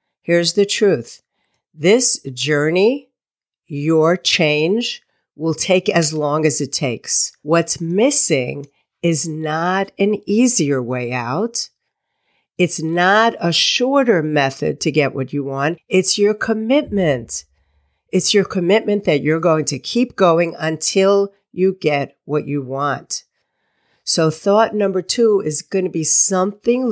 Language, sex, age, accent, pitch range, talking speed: English, female, 50-69, American, 150-205 Hz, 130 wpm